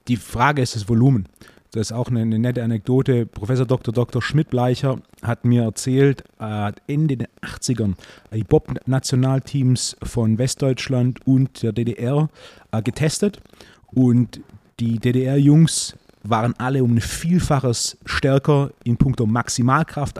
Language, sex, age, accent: German, male, 30-49, German